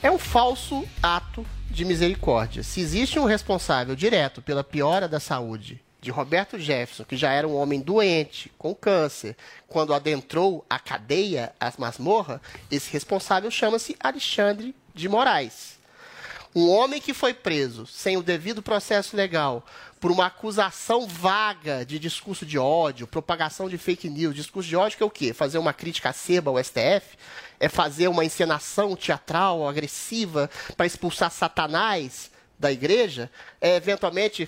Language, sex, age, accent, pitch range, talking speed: Portuguese, male, 30-49, Brazilian, 155-205 Hz, 150 wpm